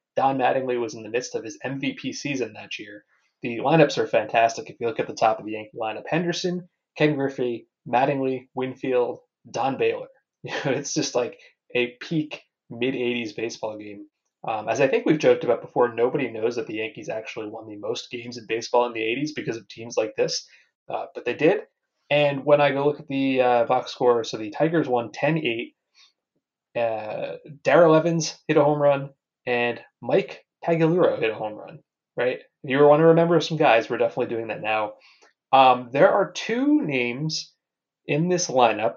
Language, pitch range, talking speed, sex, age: English, 120-170 Hz, 190 wpm, male, 20-39